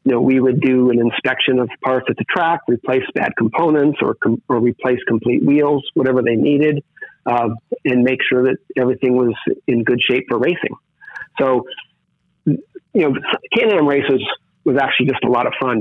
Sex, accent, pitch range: male, American, 120-135 Hz